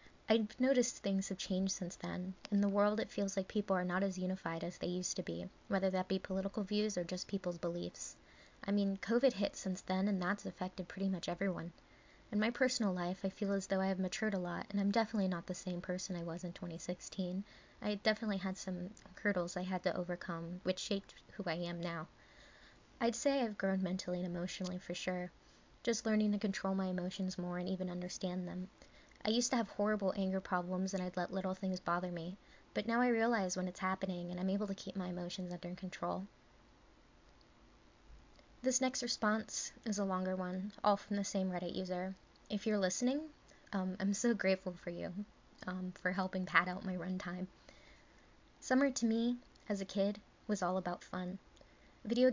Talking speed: 200 wpm